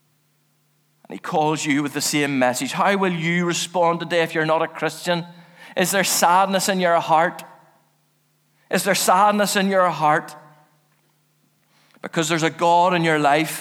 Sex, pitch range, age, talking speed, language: male, 170-245 Hz, 40-59, 160 wpm, English